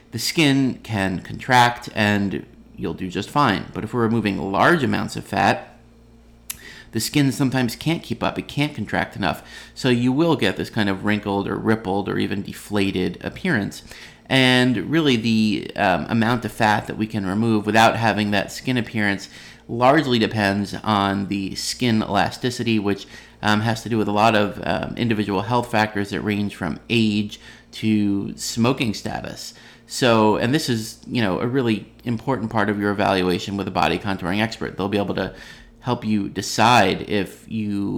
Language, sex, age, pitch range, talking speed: English, male, 30-49, 100-115 Hz, 175 wpm